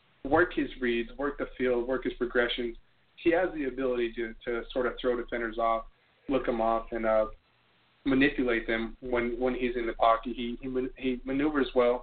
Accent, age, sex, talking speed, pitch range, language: American, 20-39, male, 190 wpm, 115-130 Hz, English